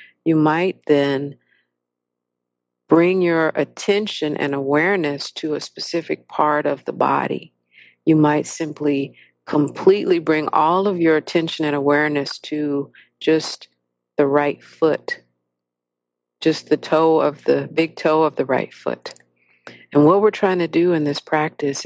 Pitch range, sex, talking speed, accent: 140-160 Hz, female, 140 wpm, American